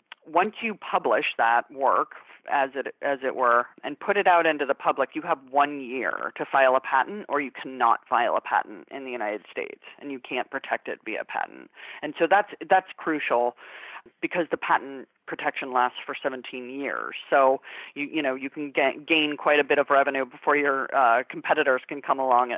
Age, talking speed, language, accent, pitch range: 30-49, 200 wpm, English, American, 135-175 Hz